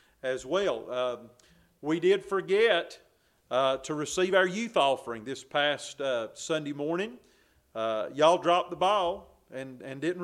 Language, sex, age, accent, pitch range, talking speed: English, male, 40-59, American, 130-175 Hz, 145 wpm